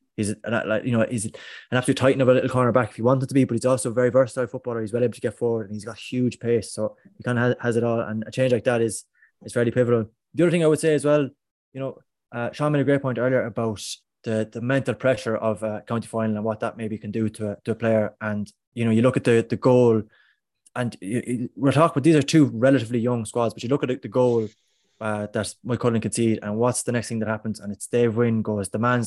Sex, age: male, 20-39